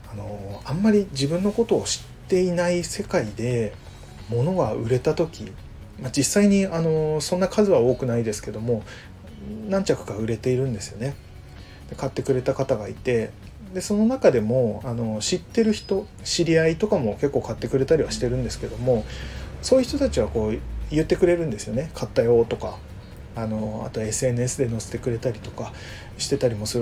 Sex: male